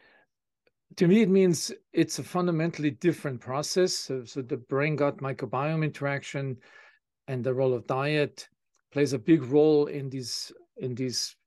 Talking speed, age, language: 150 wpm, 50-69, English